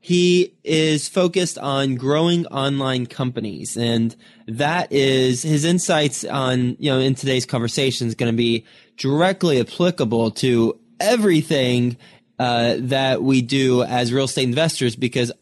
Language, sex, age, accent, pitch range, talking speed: English, male, 20-39, American, 115-140 Hz, 135 wpm